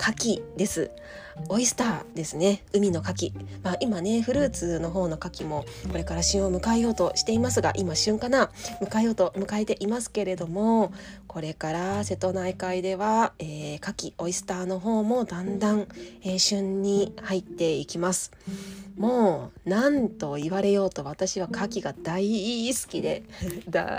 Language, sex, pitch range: Japanese, female, 180-255 Hz